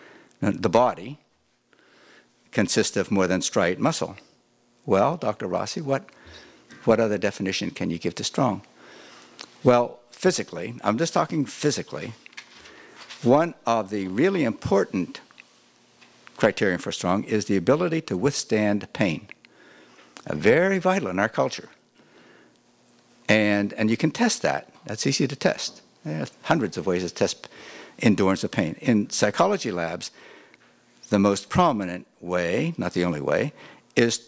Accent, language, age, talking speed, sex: American, English, 60-79, 135 wpm, male